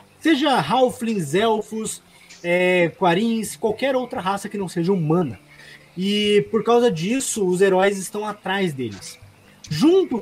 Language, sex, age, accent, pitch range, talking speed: Portuguese, male, 20-39, Brazilian, 160-225 Hz, 125 wpm